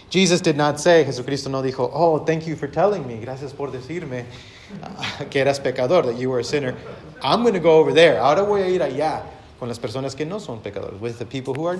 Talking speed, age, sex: 245 wpm, 30-49, male